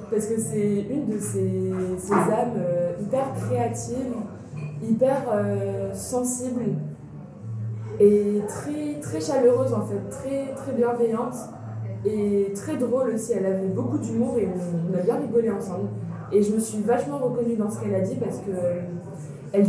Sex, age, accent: female, 20-39, French